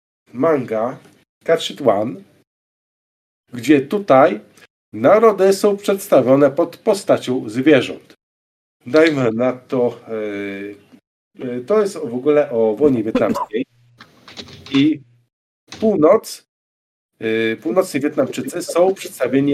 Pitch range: 115-155 Hz